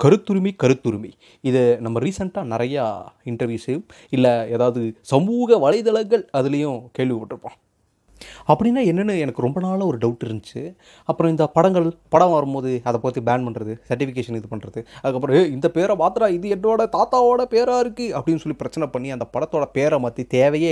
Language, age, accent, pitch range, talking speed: Tamil, 30-49, native, 125-180 Hz, 150 wpm